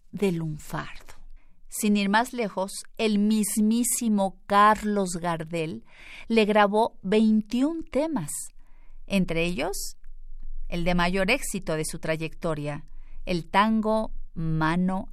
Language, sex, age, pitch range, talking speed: Spanish, female, 40-59, 170-235 Hz, 105 wpm